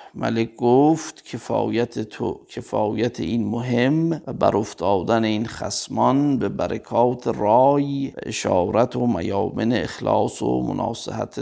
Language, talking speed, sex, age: Persian, 115 wpm, male, 50-69